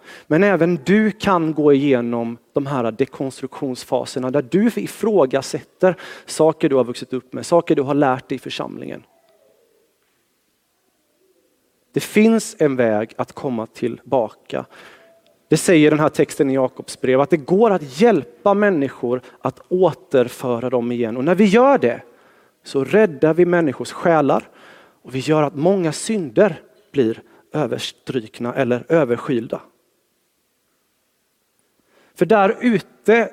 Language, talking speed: Swedish, 130 wpm